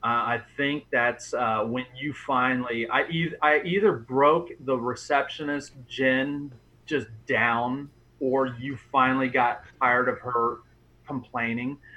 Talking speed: 125 wpm